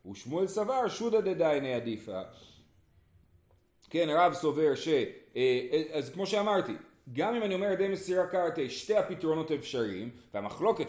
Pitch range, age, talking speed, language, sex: 135-205 Hz, 30-49, 130 wpm, Hebrew, male